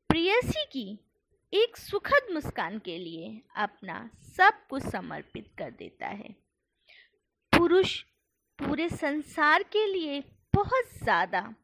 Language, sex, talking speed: Hindi, female, 110 wpm